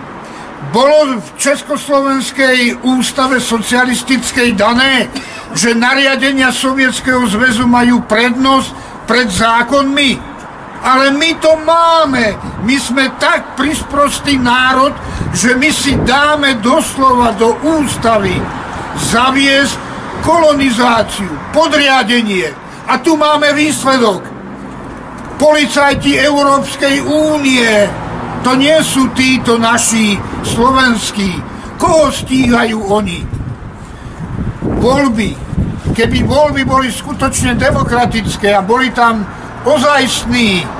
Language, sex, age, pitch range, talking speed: Czech, male, 60-79, 235-275 Hz, 85 wpm